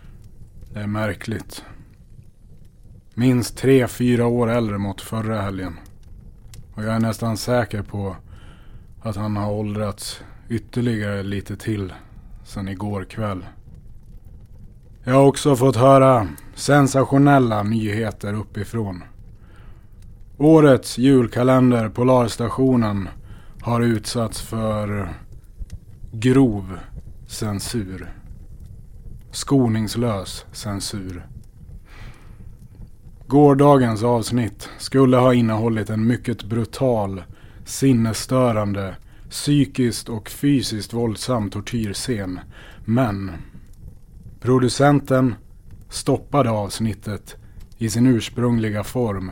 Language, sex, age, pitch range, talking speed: Swedish, male, 30-49, 100-120 Hz, 80 wpm